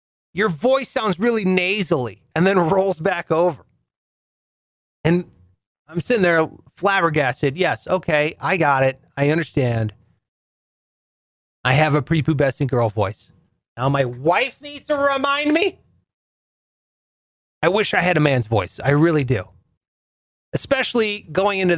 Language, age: English, 30-49